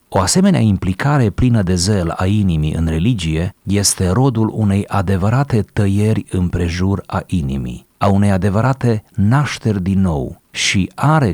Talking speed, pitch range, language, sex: 145 wpm, 90-115 Hz, Romanian, male